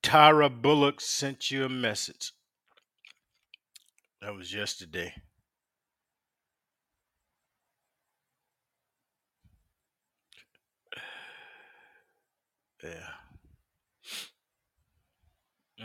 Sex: male